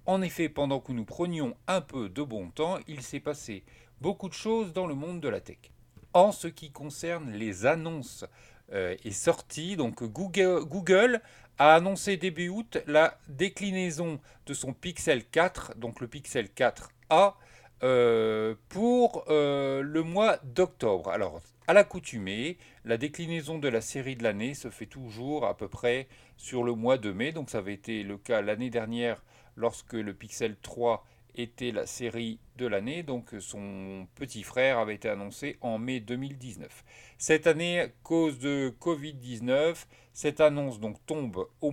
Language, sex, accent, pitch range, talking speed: French, male, French, 115-160 Hz, 155 wpm